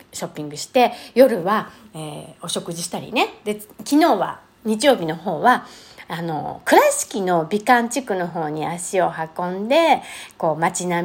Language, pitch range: Japanese, 190-285 Hz